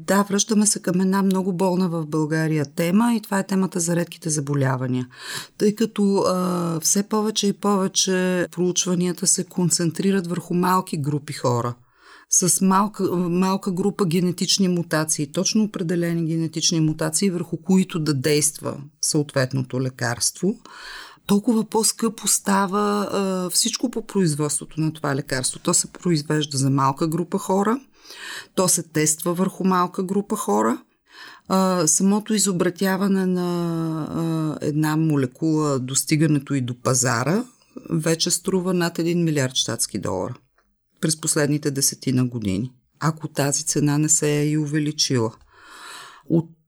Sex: female